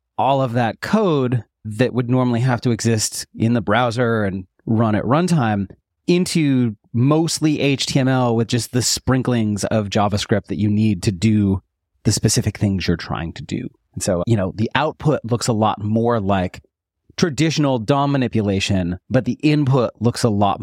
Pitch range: 105-145 Hz